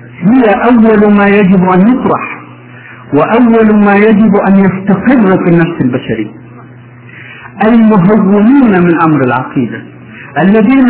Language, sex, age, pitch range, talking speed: Arabic, male, 50-69, 145-205 Hz, 105 wpm